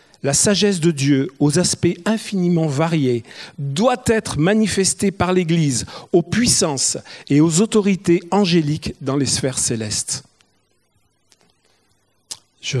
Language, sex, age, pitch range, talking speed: French, male, 50-69, 125-165 Hz, 110 wpm